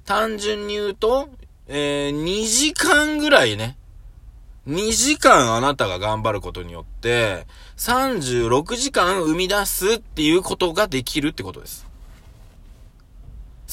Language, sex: Japanese, male